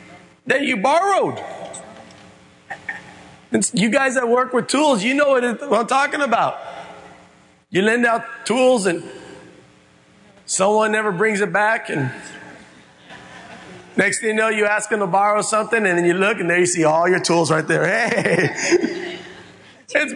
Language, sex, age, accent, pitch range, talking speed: English, male, 40-59, American, 165-275 Hz, 150 wpm